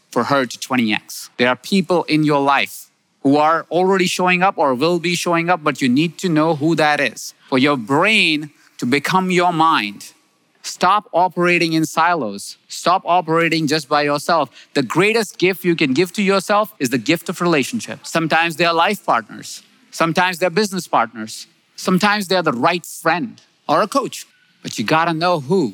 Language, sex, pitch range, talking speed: English, male, 135-180 Hz, 185 wpm